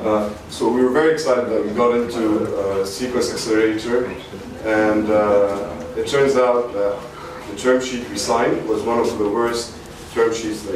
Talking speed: 180 wpm